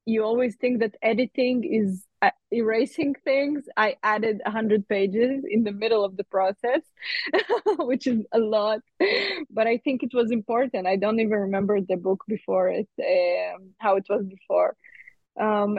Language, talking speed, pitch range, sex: English, 160 wpm, 205-250 Hz, female